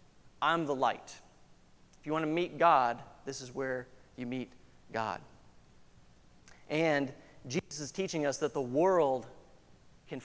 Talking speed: 140 wpm